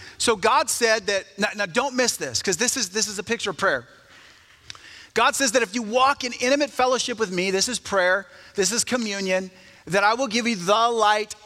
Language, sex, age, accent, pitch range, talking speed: English, male, 30-49, American, 195-250 Hz, 220 wpm